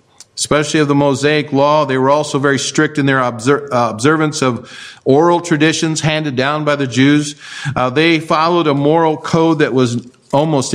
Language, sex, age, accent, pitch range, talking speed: English, male, 50-69, American, 130-155 Hz, 175 wpm